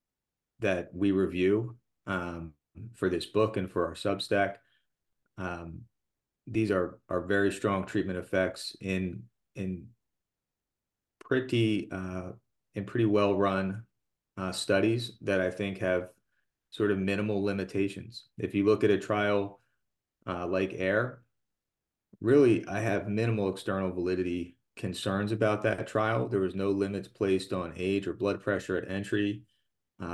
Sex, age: male, 30-49